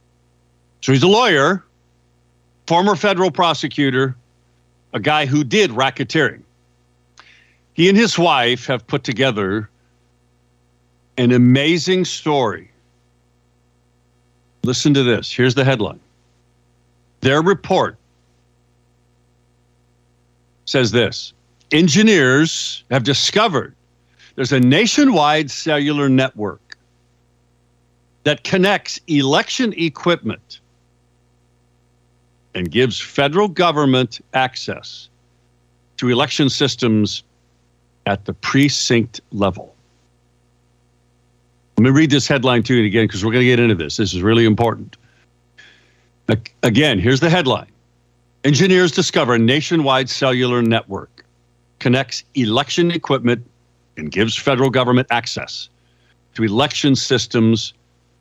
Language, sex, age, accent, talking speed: English, male, 50-69, American, 100 wpm